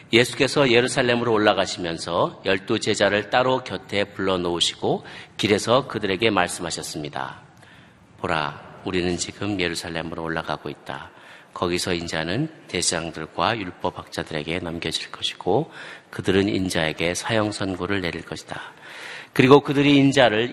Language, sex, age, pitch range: Korean, male, 40-59, 85-115 Hz